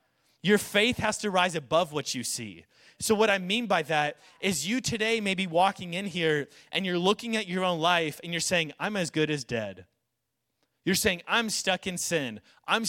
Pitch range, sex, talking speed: 155-210 Hz, male, 210 wpm